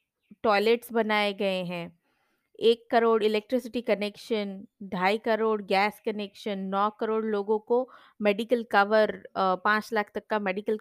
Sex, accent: female, native